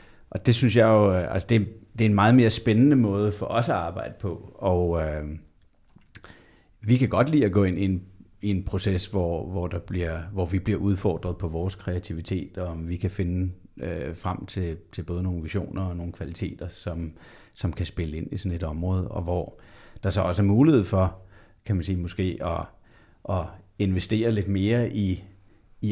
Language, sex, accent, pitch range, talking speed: Danish, male, native, 90-105 Hz, 200 wpm